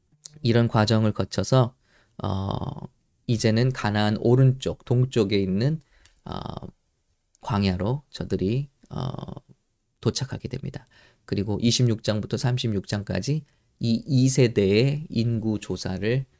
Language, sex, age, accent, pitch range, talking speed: English, male, 20-39, Korean, 105-140 Hz, 80 wpm